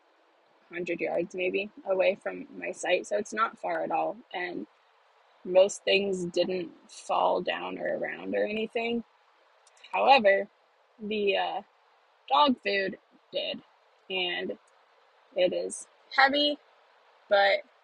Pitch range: 195-260 Hz